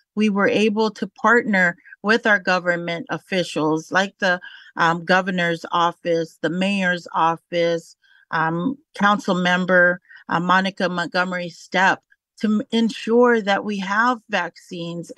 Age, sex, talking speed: 40-59, female, 120 wpm